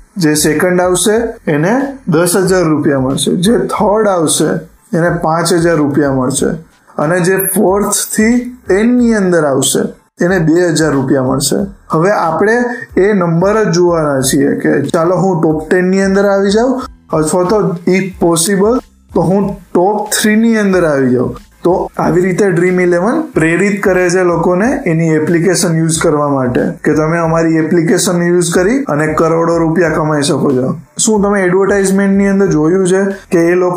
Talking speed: 110 wpm